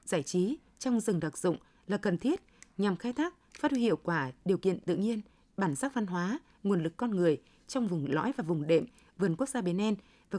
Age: 20-39